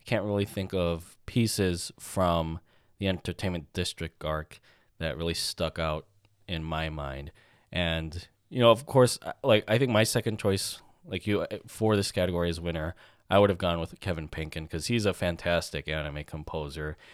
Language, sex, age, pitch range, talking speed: English, male, 20-39, 85-110 Hz, 170 wpm